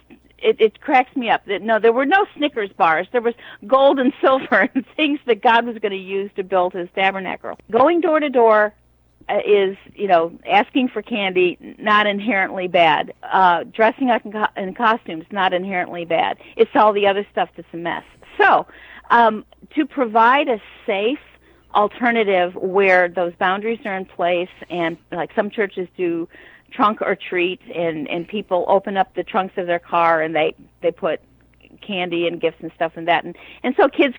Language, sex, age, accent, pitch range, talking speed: English, female, 40-59, American, 185-260 Hz, 185 wpm